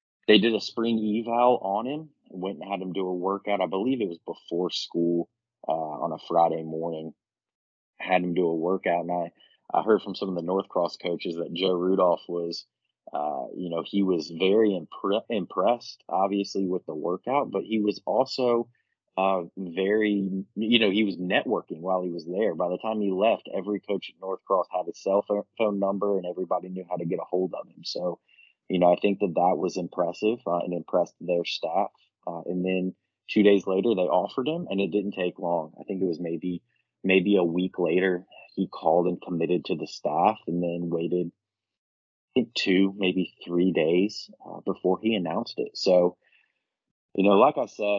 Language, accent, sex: English, American, male